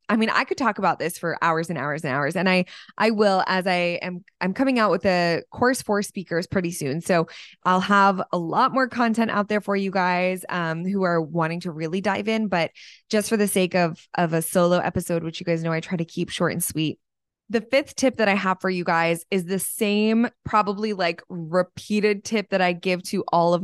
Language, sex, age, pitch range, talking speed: English, female, 20-39, 175-210 Hz, 235 wpm